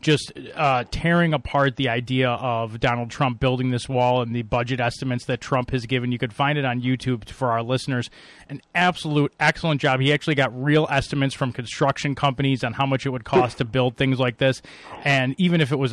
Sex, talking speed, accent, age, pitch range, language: male, 215 wpm, American, 30-49, 125-140 Hz, English